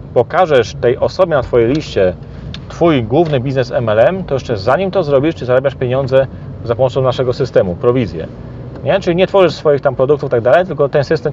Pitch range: 120-140 Hz